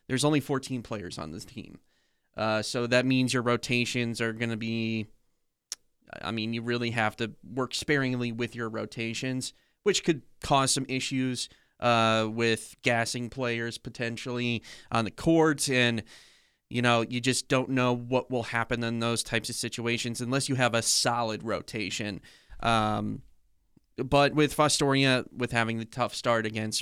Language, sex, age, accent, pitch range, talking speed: English, male, 20-39, American, 115-130 Hz, 160 wpm